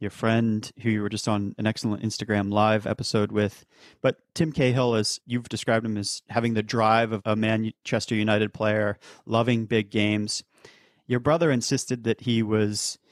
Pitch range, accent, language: 110-125 Hz, American, English